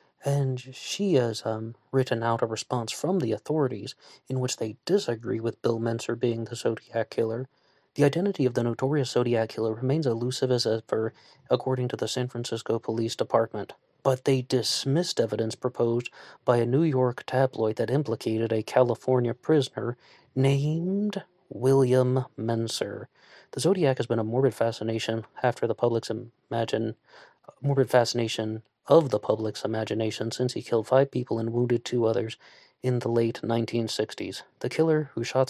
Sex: male